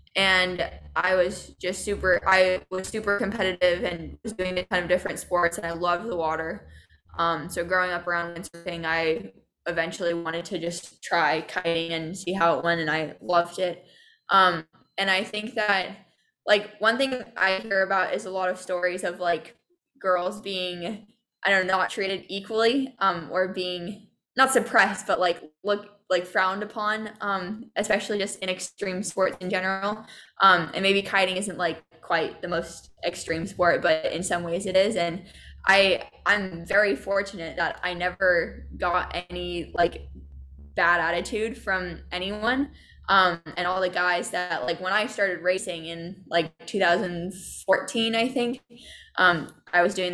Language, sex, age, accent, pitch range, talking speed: English, female, 10-29, American, 170-200 Hz, 170 wpm